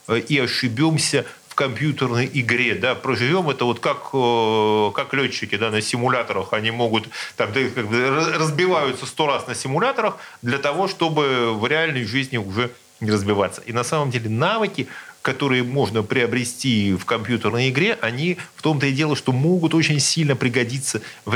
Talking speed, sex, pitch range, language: 150 wpm, male, 115-150 Hz, Russian